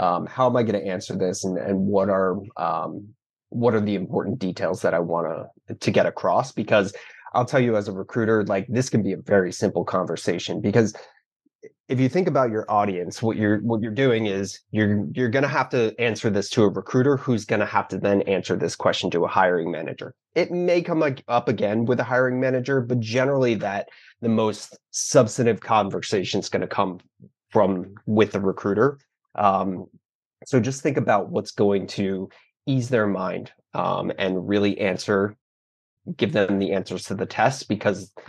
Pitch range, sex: 100-120 Hz, male